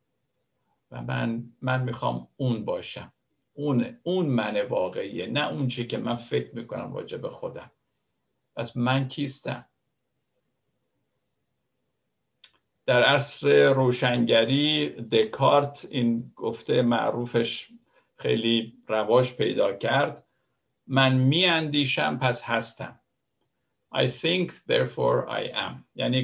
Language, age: Persian, 50-69